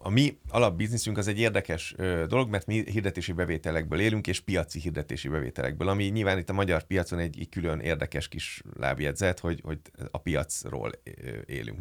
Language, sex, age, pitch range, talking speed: Hungarian, male, 30-49, 80-105 Hz, 165 wpm